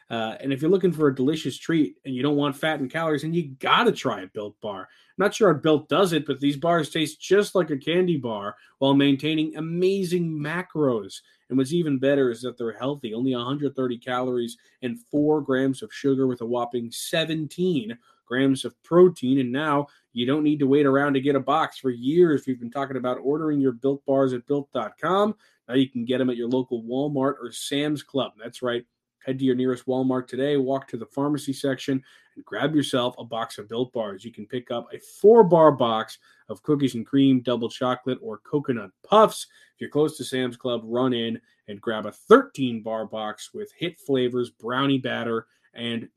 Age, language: 20-39, English